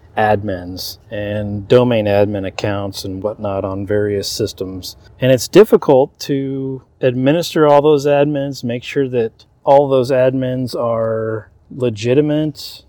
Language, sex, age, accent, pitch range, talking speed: English, male, 30-49, American, 105-135 Hz, 120 wpm